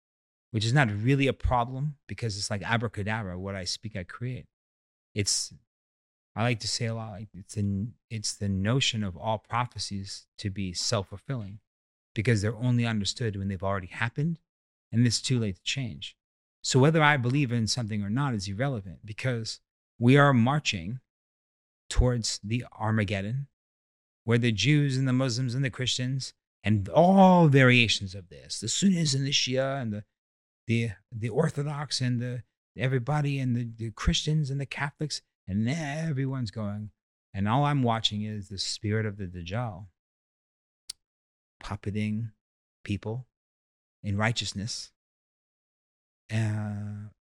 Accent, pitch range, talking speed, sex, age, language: American, 100-125 Hz, 145 wpm, male, 30-49, English